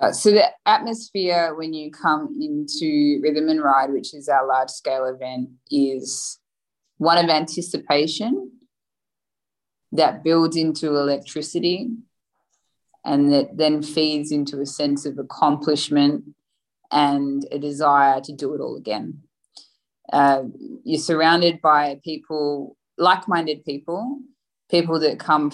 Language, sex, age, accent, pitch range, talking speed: English, female, 20-39, Australian, 145-170 Hz, 120 wpm